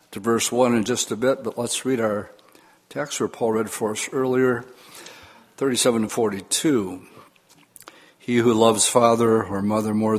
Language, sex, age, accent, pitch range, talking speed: English, male, 60-79, American, 105-130 Hz, 165 wpm